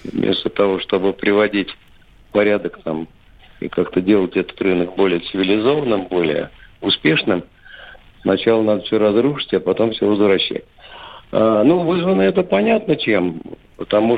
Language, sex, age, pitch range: Russian, male, 50-69, 100-125 Hz